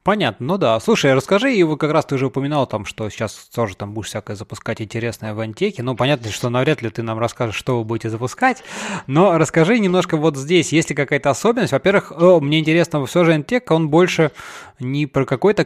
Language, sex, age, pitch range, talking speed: Russian, male, 20-39, 115-145 Hz, 215 wpm